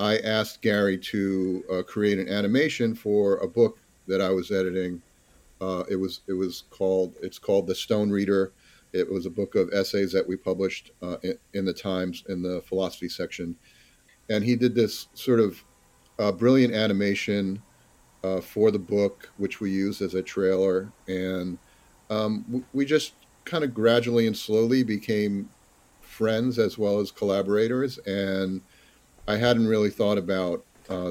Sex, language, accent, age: male, English, American, 50-69